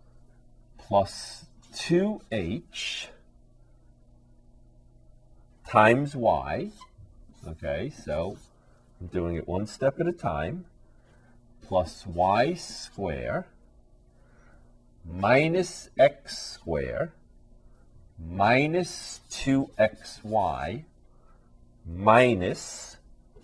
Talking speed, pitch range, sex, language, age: 55 wpm, 90-120 Hz, male, English, 40-59